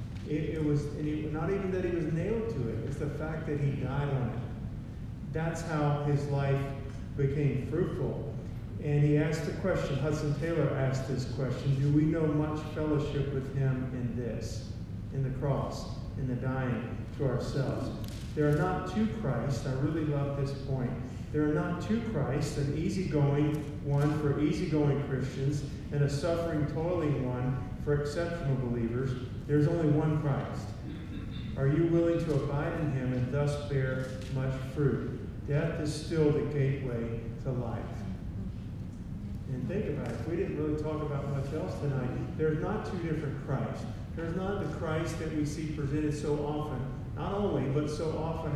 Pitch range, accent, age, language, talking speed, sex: 125-150 Hz, American, 40-59, English, 170 wpm, male